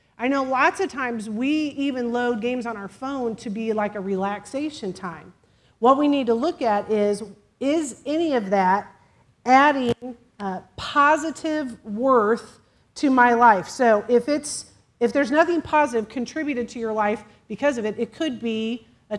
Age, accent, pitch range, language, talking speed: 40-59, American, 205-255 Hz, English, 170 wpm